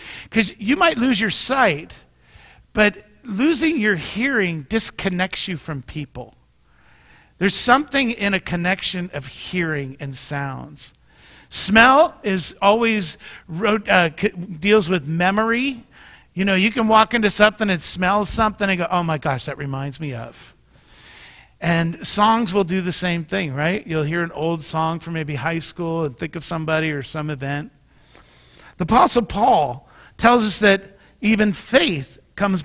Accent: American